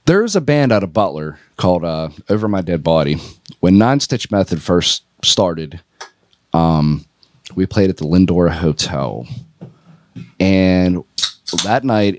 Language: English